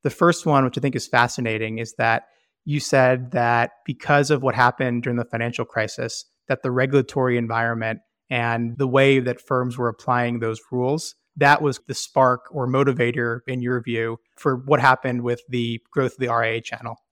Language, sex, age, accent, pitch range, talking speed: English, male, 30-49, American, 120-135 Hz, 185 wpm